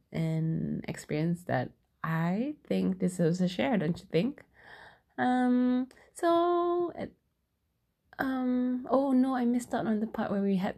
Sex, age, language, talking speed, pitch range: female, 20-39, English, 150 wpm, 160-200 Hz